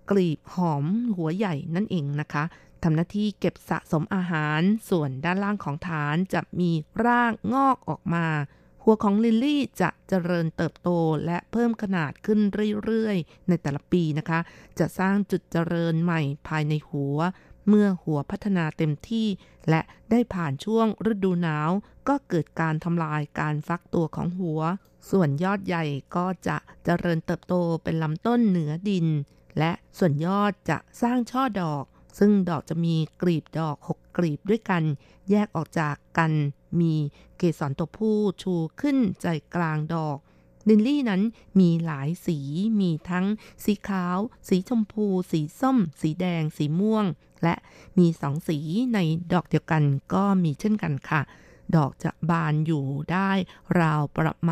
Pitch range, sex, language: 155-200 Hz, female, Thai